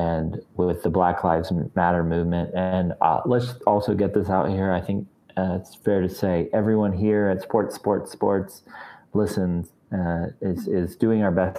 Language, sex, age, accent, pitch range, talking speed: English, male, 30-49, American, 90-105 Hz, 180 wpm